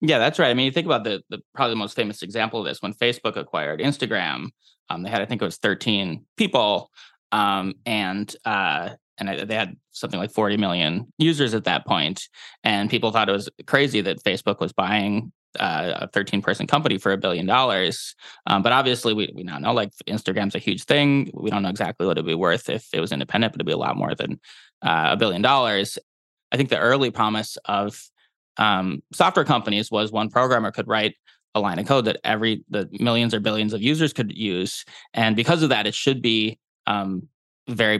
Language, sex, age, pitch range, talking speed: English, male, 20-39, 100-120 Hz, 215 wpm